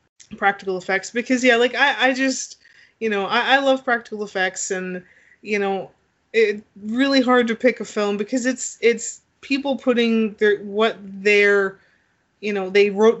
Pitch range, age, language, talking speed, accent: 190-230 Hz, 20-39, English, 170 wpm, American